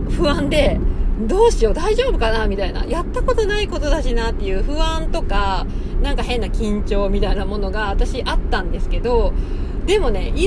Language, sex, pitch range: Japanese, female, 70-95 Hz